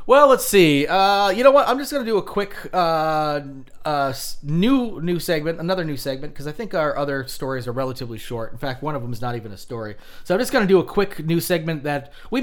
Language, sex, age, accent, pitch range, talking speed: English, male, 30-49, American, 135-190 Hz, 255 wpm